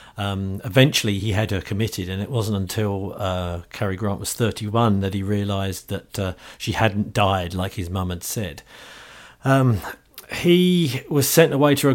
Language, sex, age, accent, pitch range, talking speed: English, male, 50-69, British, 105-130 Hz, 175 wpm